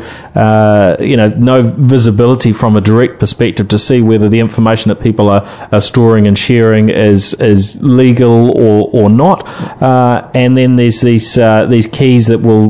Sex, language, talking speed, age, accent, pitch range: male, English, 175 wpm, 30-49, Australian, 105-120 Hz